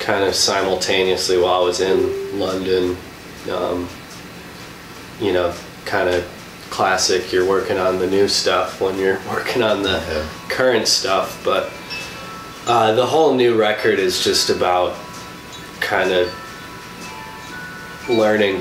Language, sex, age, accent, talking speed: English, male, 20-39, American, 125 wpm